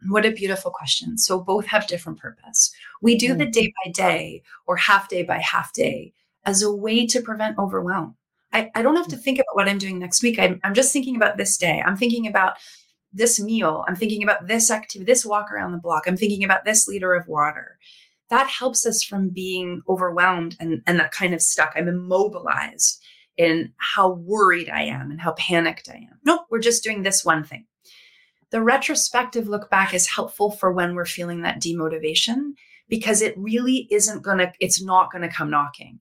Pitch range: 175-225 Hz